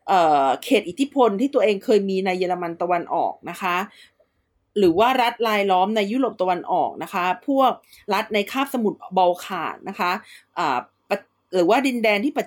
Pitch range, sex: 190-245 Hz, female